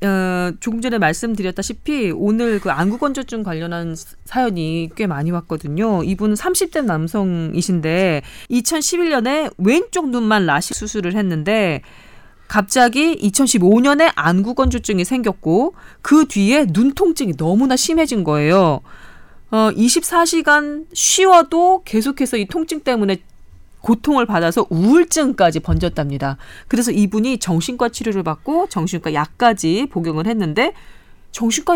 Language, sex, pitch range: Korean, female, 175-270 Hz